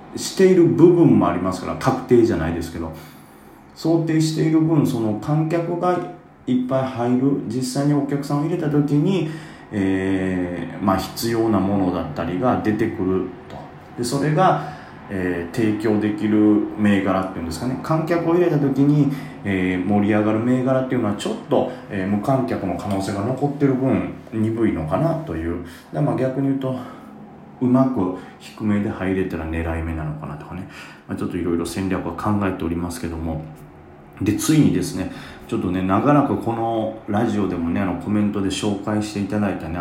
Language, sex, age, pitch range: Japanese, male, 30-49, 85-130 Hz